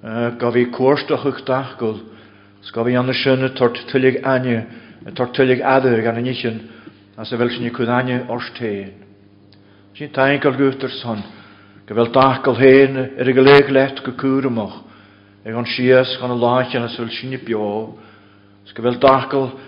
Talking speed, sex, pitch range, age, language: 100 wpm, male, 115-135 Hz, 50-69, English